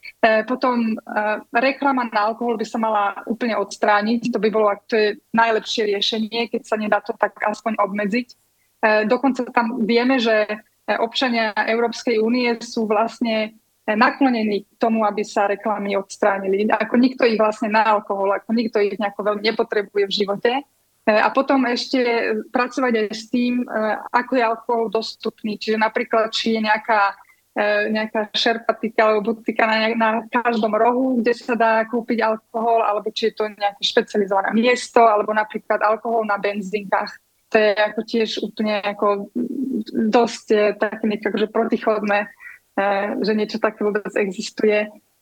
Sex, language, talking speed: female, Slovak, 145 wpm